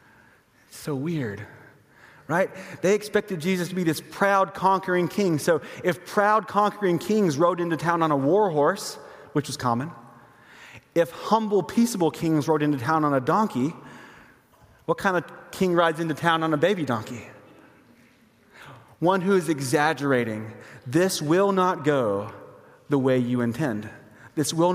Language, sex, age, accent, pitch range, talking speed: English, male, 30-49, American, 135-180 Hz, 150 wpm